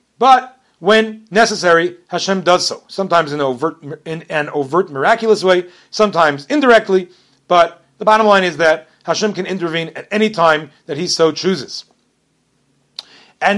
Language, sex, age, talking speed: English, male, 40-59, 140 wpm